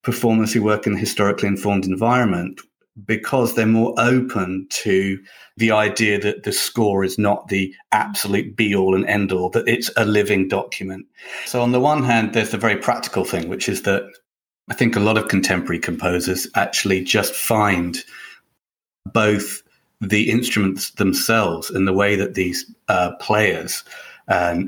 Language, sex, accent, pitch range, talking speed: English, male, British, 95-115 Hz, 165 wpm